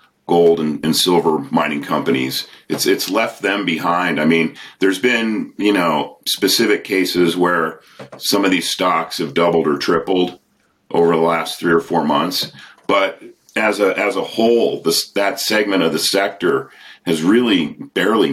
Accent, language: American, English